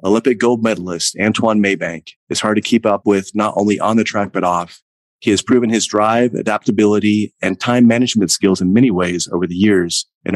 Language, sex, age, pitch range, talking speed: English, male, 30-49, 95-110 Hz, 205 wpm